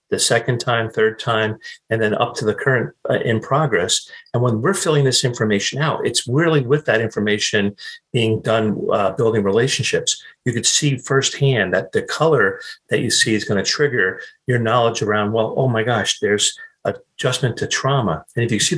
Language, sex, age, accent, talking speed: English, male, 50-69, American, 190 wpm